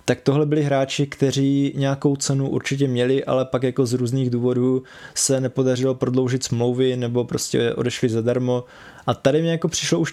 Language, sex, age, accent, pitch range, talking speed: Czech, male, 20-39, native, 125-145 Hz, 170 wpm